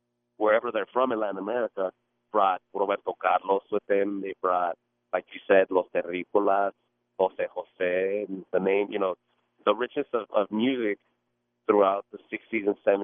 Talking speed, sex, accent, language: 155 wpm, male, American, English